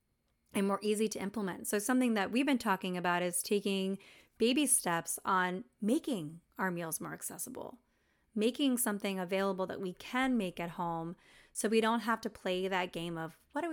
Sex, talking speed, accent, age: female, 185 wpm, American, 30-49